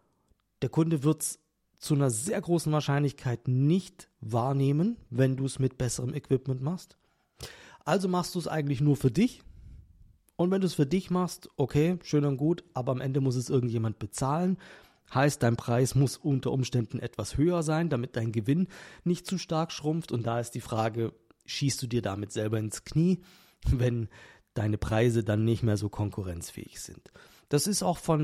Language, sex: German, male